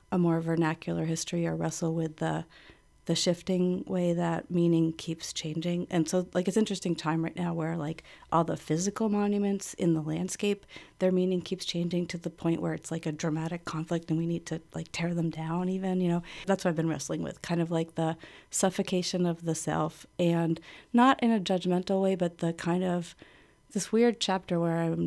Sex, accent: female, American